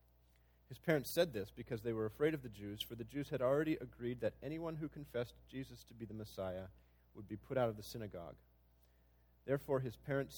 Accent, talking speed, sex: American, 210 wpm, male